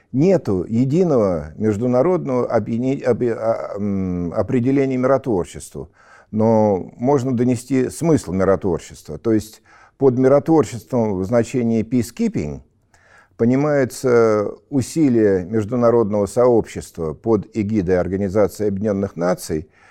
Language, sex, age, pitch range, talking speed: Russian, male, 50-69, 100-130 Hz, 85 wpm